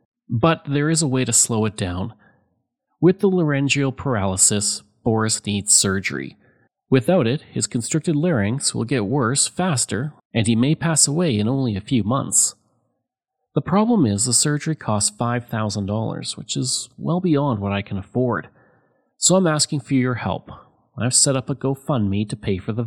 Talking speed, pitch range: 170 wpm, 110-155 Hz